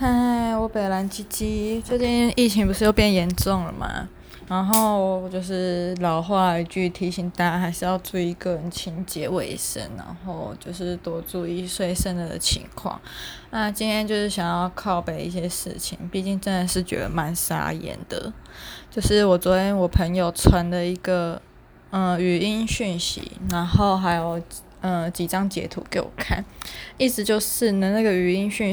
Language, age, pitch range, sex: Chinese, 20-39, 175-200 Hz, female